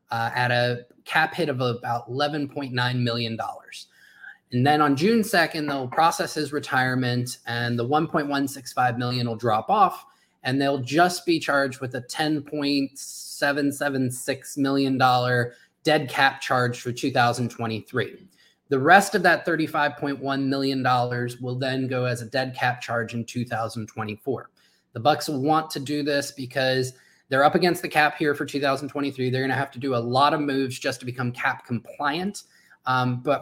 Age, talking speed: 20-39, 160 wpm